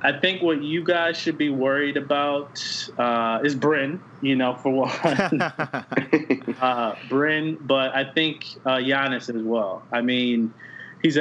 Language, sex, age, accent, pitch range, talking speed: English, male, 20-39, American, 115-145 Hz, 150 wpm